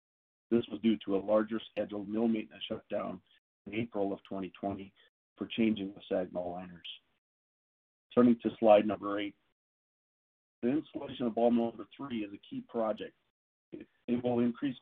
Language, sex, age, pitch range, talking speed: English, male, 40-59, 100-120 Hz, 160 wpm